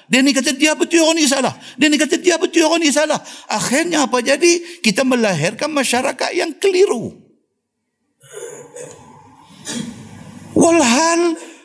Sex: male